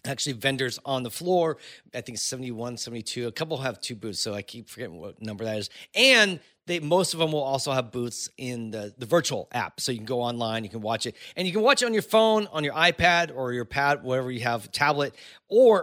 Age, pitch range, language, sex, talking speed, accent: 30-49, 125-170 Hz, English, male, 245 wpm, American